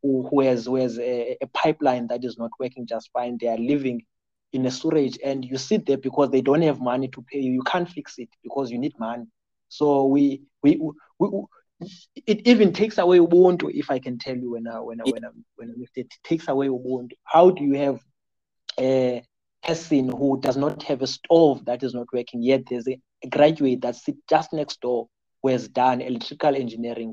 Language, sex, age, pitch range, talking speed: English, male, 30-49, 125-150 Hz, 200 wpm